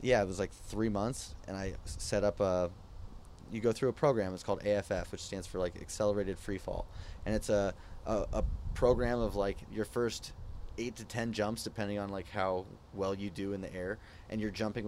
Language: English